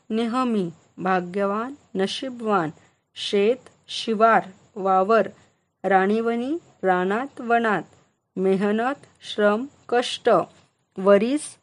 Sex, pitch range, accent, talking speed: female, 200-265 Hz, native, 65 wpm